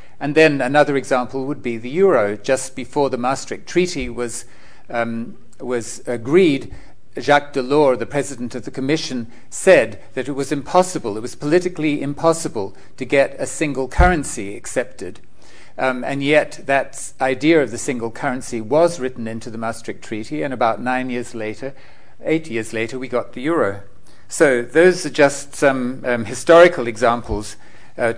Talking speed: 160 wpm